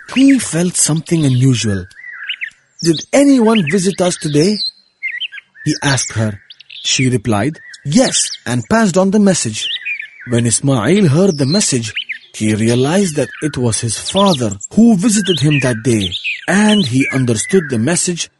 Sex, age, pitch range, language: male, 40-59, 120-190 Hz, Indonesian